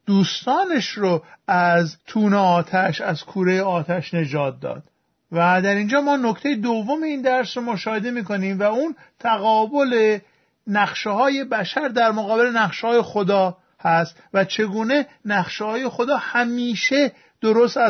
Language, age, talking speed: Persian, 50-69, 135 wpm